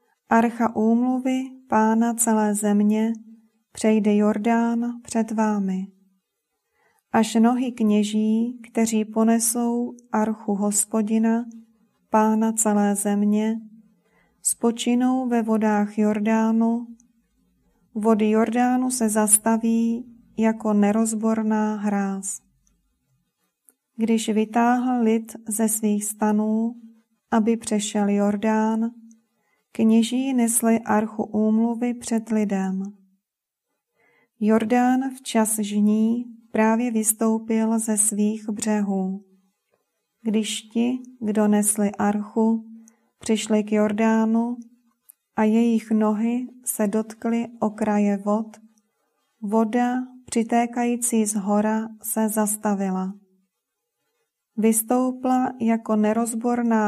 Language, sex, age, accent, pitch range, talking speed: Czech, female, 30-49, native, 215-230 Hz, 80 wpm